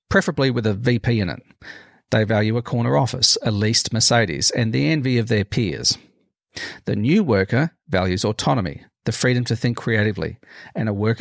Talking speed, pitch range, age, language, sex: 175 wpm, 105-125 Hz, 40-59, English, male